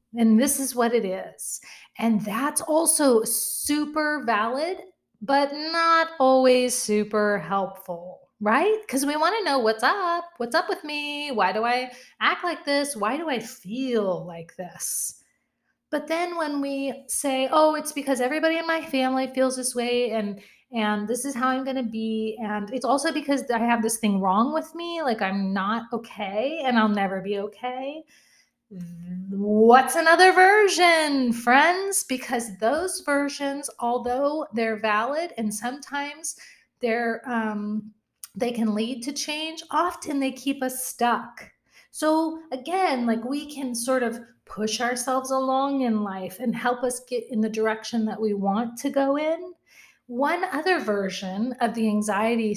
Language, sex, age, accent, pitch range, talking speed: English, female, 30-49, American, 220-290 Hz, 160 wpm